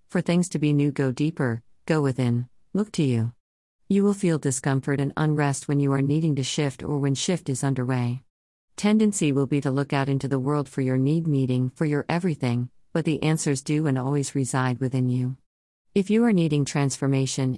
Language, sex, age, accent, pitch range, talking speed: English, female, 50-69, American, 130-160 Hz, 200 wpm